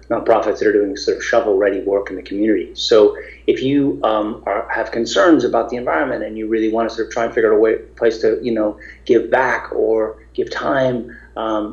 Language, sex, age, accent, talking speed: English, male, 40-59, American, 225 wpm